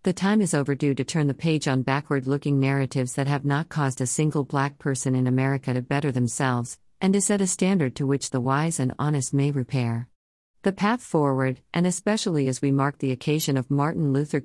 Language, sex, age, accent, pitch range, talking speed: English, female, 50-69, American, 130-155 Hz, 210 wpm